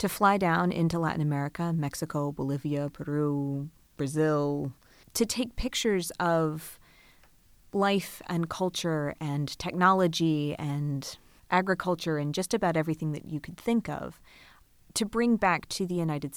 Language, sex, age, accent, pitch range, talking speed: English, female, 30-49, American, 145-180 Hz, 130 wpm